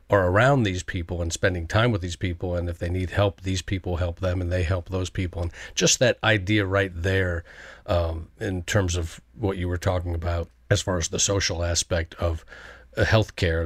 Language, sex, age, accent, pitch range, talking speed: English, male, 40-59, American, 90-105 Hz, 205 wpm